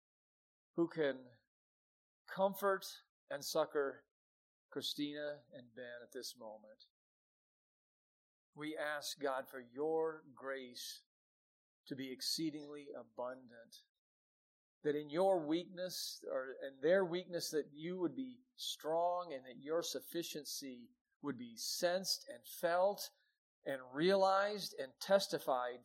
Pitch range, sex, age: 135-190 Hz, male, 40-59